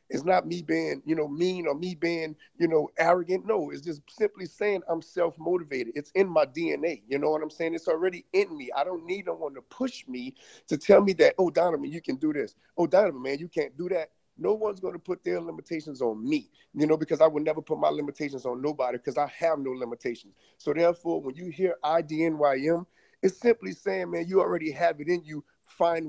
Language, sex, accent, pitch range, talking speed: English, male, American, 150-190 Hz, 230 wpm